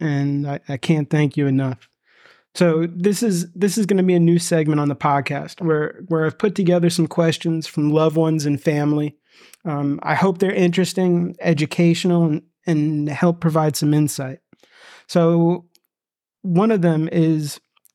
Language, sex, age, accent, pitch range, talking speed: English, male, 30-49, American, 155-180 Hz, 165 wpm